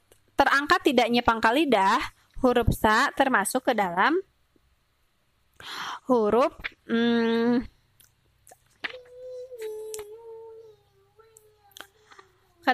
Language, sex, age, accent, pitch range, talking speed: Indonesian, female, 20-39, native, 220-295 Hz, 55 wpm